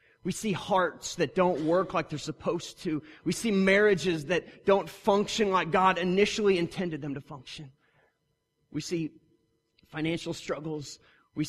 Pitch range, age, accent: 150-205 Hz, 30-49, American